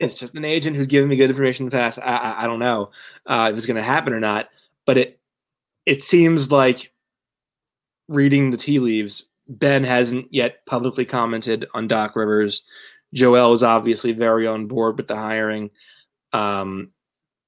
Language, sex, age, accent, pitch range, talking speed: English, male, 20-39, American, 115-140 Hz, 180 wpm